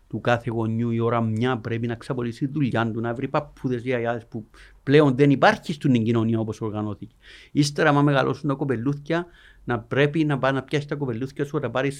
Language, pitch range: Greek, 115-160 Hz